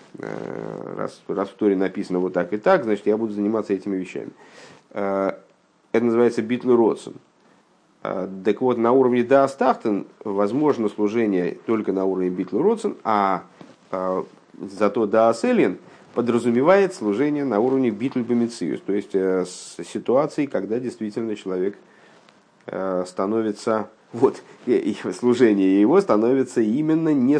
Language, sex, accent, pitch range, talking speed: Russian, male, native, 95-120 Hz, 125 wpm